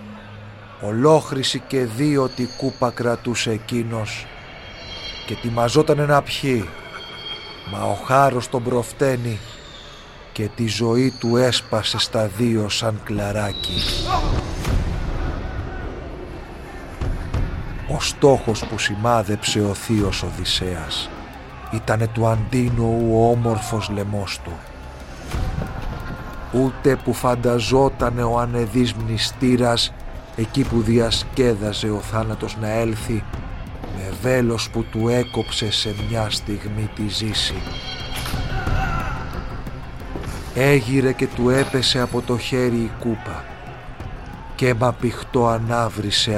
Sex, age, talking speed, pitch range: male, 50-69, 95 wpm, 105-125 Hz